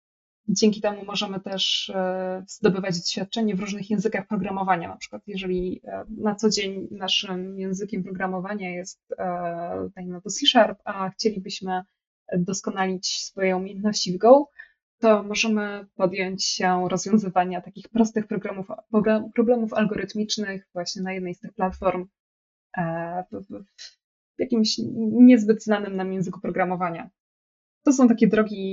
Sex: female